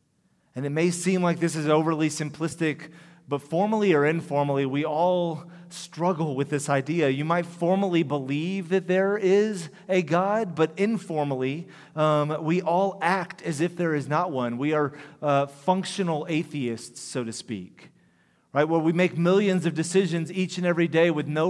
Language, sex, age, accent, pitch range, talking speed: English, male, 30-49, American, 130-165 Hz, 170 wpm